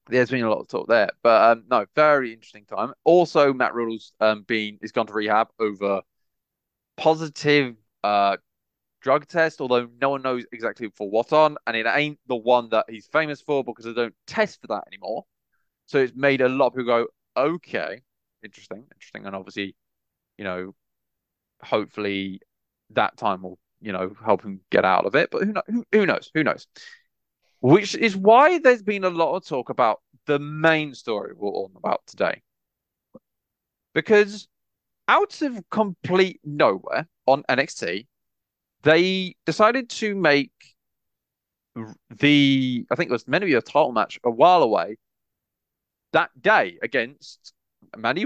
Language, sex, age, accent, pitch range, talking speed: English, male, 20-39, British, 110-165 Hz, 165 wpm